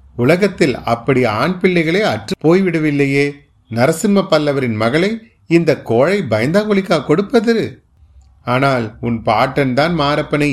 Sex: male